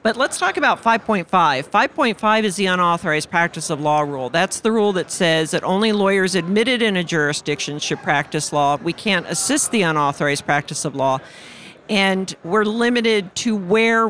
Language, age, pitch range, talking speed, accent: English, 50-69, 165-220 Hz, 175 wpm, American